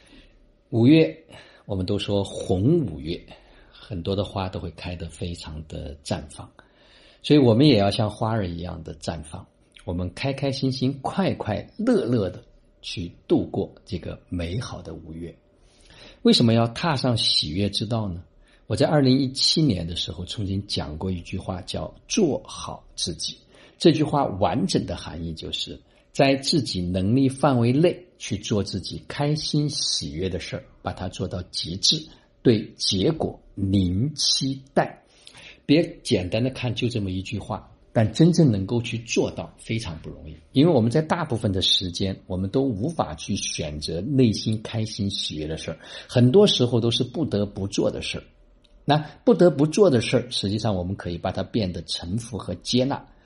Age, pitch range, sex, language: 50-69, 90-130 Hz, male, Chinese